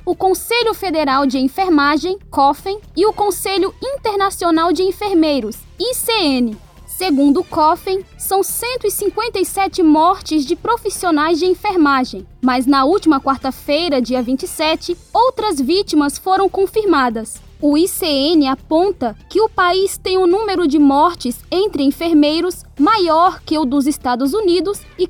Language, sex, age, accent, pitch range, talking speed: Portuguese, female, 10-29, Brazilian, 280-380 Hz, 125 wpm